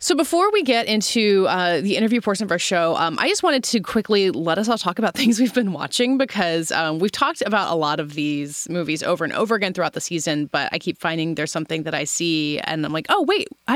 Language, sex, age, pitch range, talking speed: English, female, 30-49, 160-215 Hz, 255 wpm